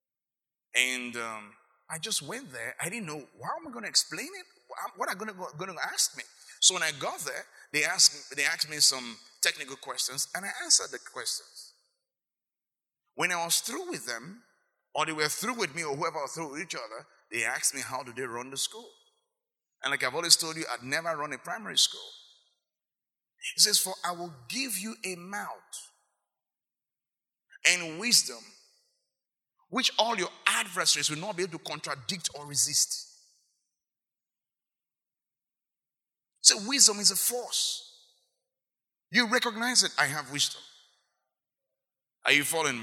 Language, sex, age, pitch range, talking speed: English, male, 30-49, 140-215 Hz, 165 wpm